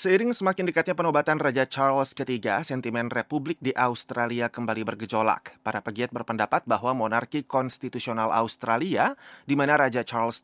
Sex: male